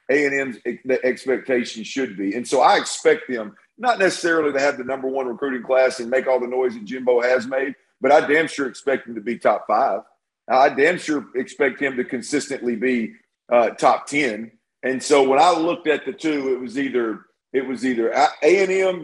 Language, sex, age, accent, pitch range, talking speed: English, male, 50-69, American, 130-160 Hz, 200 wpm